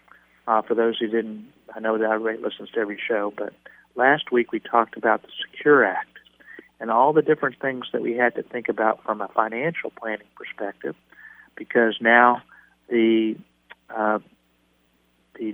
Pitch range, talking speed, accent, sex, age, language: 110-120 Hz, 160 wpm, American, male, 40-59, English